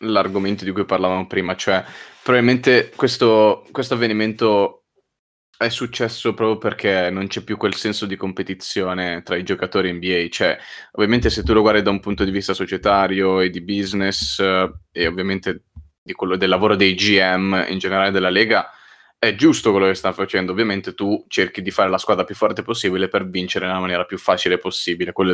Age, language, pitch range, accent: 20-39, Italian, 95-110 Hz, native